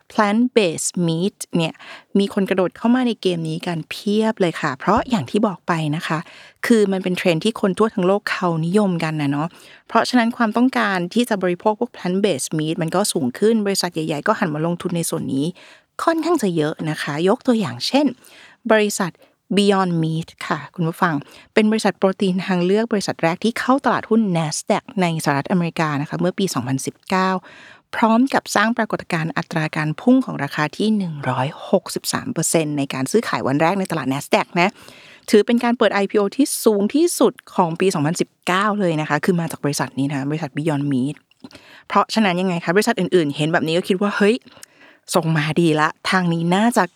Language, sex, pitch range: Thai, female, 160-215 Hz